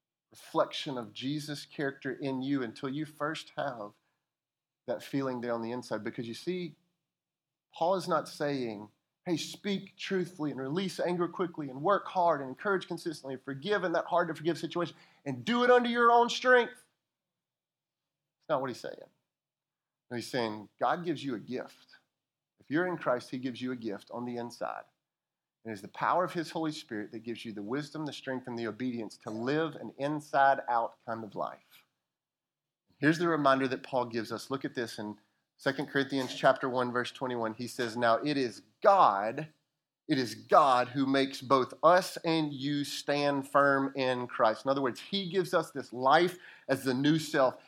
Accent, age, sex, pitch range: American, 30-49, male, 130-175 Hz